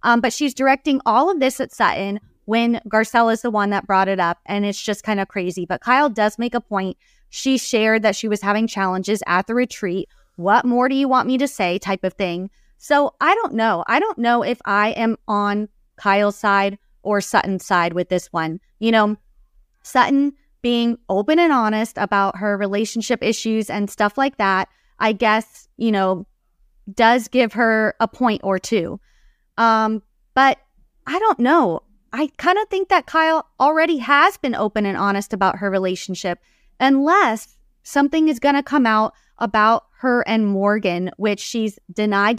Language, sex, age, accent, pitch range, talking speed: English, female, 20-39, American, 200-255 Hz, 185 wpm